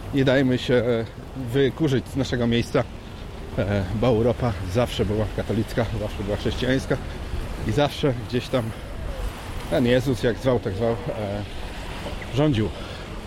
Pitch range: 100-125 Hz